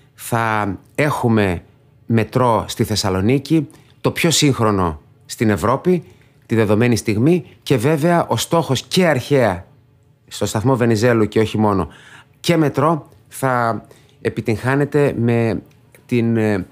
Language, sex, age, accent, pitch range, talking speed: Greek, male, 30-49, native, 105-135 Hz, 110 wpm